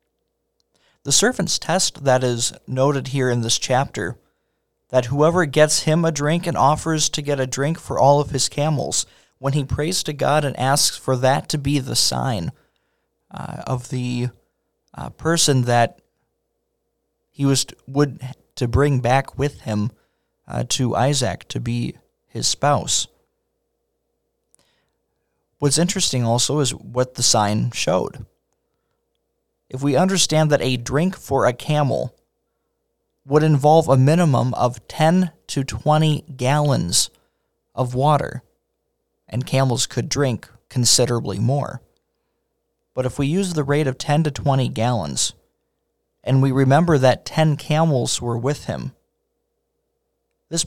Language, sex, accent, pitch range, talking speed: English, male, American, 125-150 Hz, 140 wpm